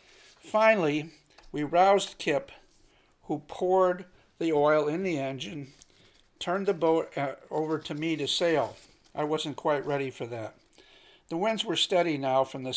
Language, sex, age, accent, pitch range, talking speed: English, male, 60-79, American, 145-175 Hz, 150 wpm